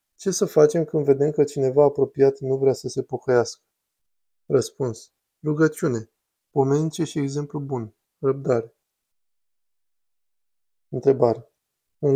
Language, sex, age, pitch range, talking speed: Romanian, male, 20-39, 130-150 Hz, 110 wpm